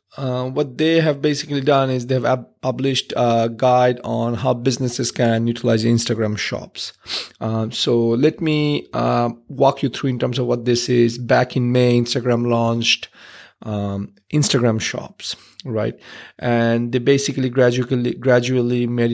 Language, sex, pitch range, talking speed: English, male, 120-135 Hz, 145 wpm